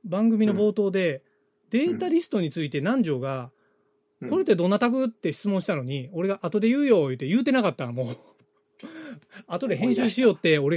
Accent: native